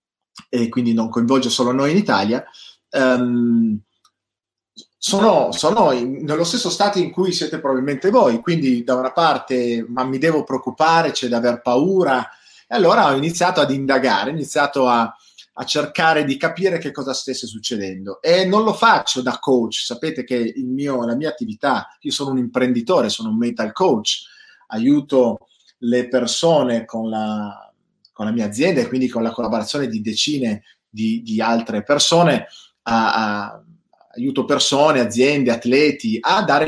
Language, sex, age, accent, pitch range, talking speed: Italian, male, 30-49, native, 120-145 Hz, 150 wpm